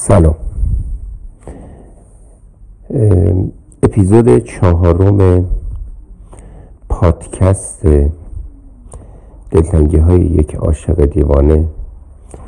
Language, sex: Persian, male